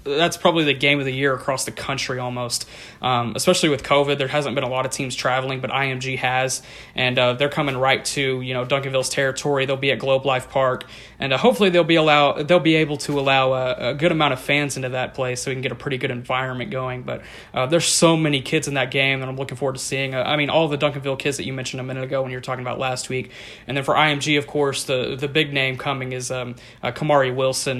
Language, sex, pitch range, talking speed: English, male, 130-145 Hz, 265 wpm